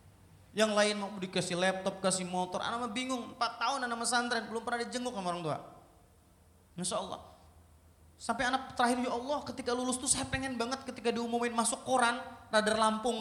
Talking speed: 175 wpm